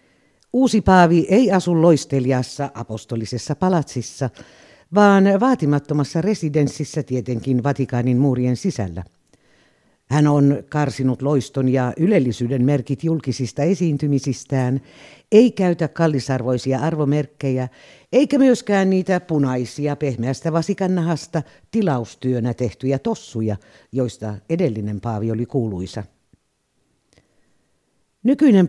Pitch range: 125-180 Hz